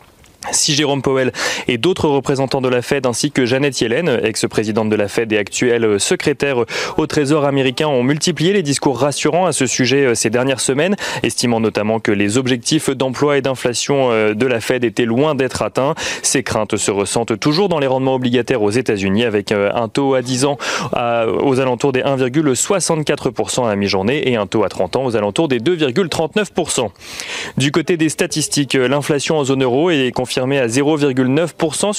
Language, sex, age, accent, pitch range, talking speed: French, male, 30-49, French, 120-150 Hz, 180 wpm